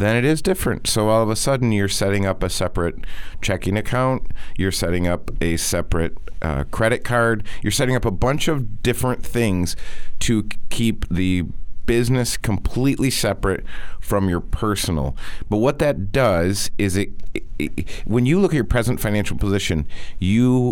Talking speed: 170 wpm